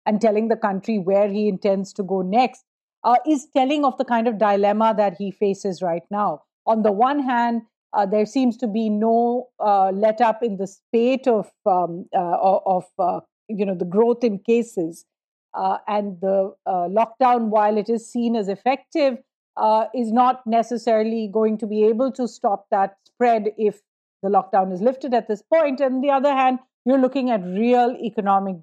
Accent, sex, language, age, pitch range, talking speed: Indian, female, English, 50-69, 205-245 Hz, 190 wpm